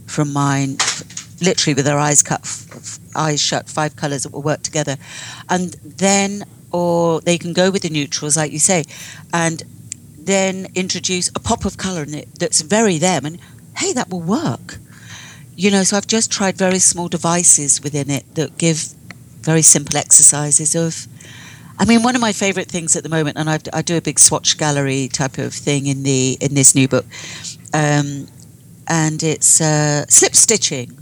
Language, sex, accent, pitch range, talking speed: English, female, British, 140-175 Hz, 190 wpm